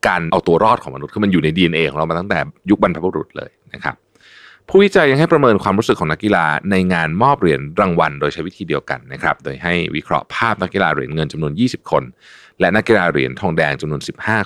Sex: male